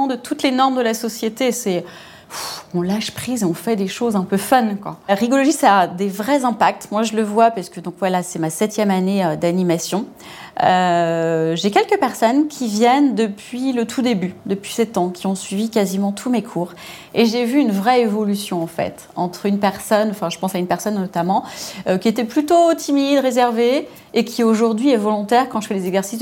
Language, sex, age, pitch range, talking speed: French, female, 30-49, 195-250 Hz, 215 wpm